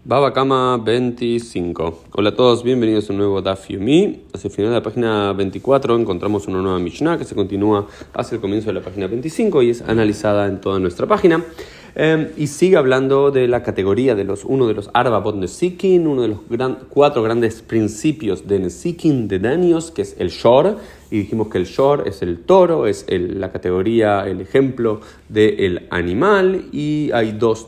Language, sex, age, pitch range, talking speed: Spanish, male, 30-49, 100-135 Hz, 190 wpm